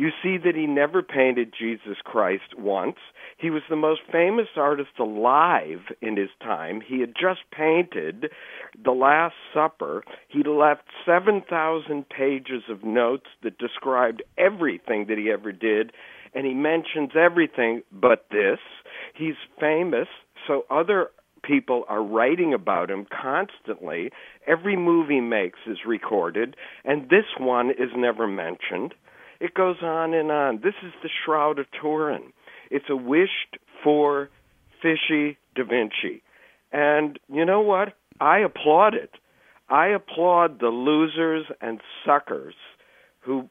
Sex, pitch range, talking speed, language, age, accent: male, 130-170 Hz, 135 wpm, English, 50-69, American